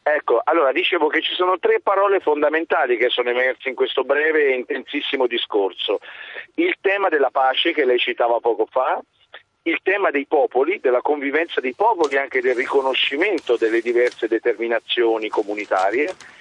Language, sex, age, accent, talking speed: Italian, male, 40-59, native, 155 wpm